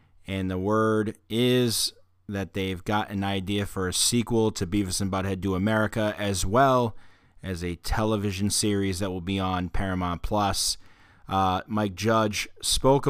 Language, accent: English, American